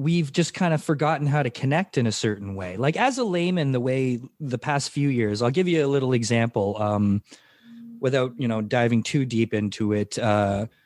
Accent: American